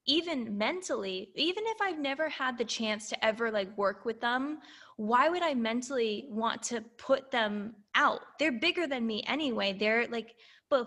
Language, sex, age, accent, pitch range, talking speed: English, female, 10-29, American, 210-270 Hz, 175 wpm